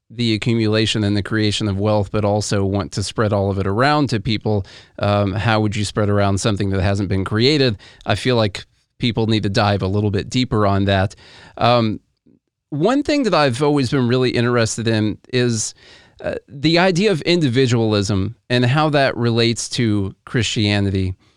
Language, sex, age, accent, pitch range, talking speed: English, male, 40-59, American, 105-140 Hz, 180 wpm